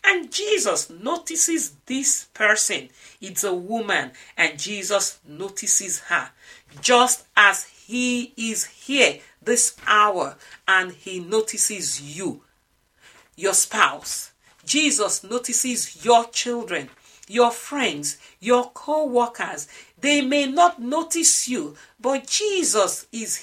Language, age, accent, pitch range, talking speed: English, 50-69, Nigerian, 205-290 Hz, 105 wpm